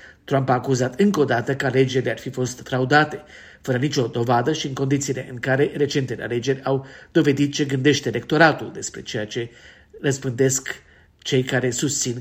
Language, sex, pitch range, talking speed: Romanian, male, 120-145 Hz, 165 wpm